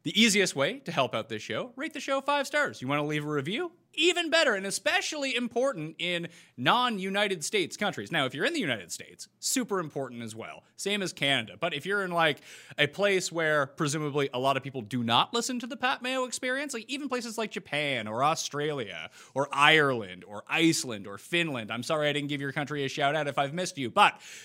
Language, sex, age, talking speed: English, male, 30-49, 220 wpm